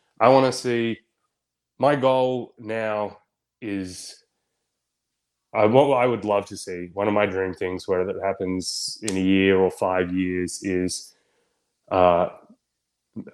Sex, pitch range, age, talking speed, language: male, 95-115 Hz, 20-39, 140 wpm, English